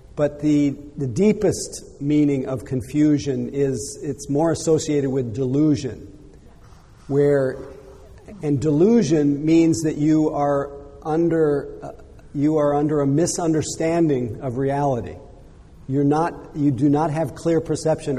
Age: 50-69